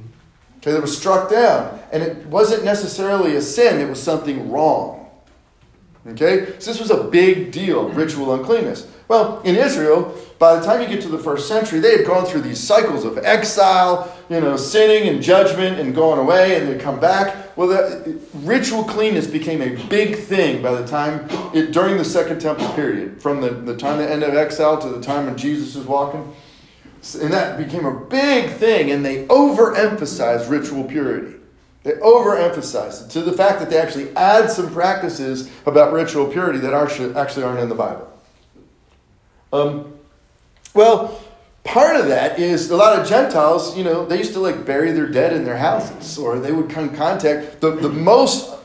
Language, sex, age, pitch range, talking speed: English, male, 40-59, 145-200 Hz, 185 wpm